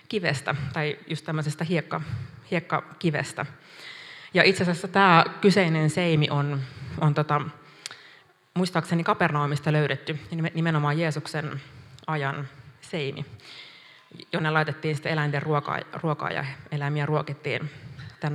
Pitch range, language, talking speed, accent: 145-170 Hz, Finnish, 95 wpm, native